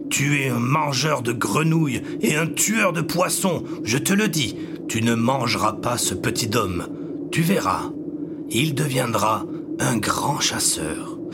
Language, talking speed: French, 155 wpm